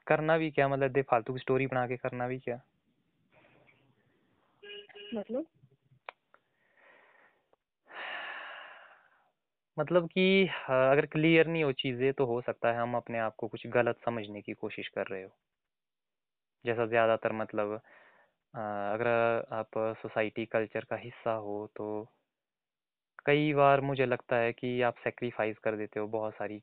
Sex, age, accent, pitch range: male, 20-39, native, 110-135 Hz